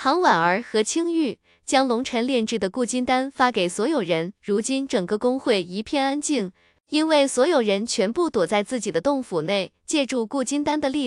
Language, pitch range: Chinese, 215-280 Hz